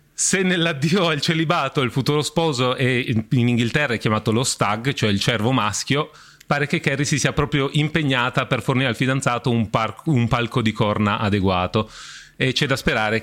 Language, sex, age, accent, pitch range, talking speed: Italian, male, 30-49, native, 110-165 Hz, 180 wpm